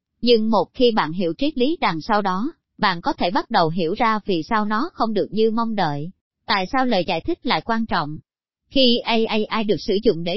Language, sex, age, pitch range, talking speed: Vietnamese, male, 20-39, 185-245 Hz, 225 wpm